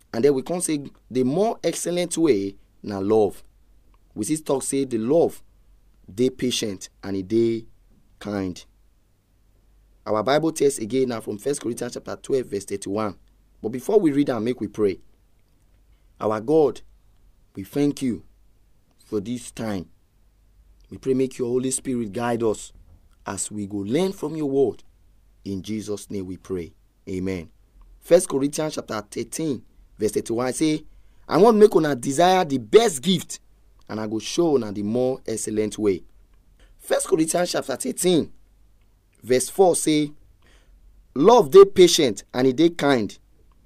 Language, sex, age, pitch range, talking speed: English, male, 30-49, 100-150 Hz, 155 wpm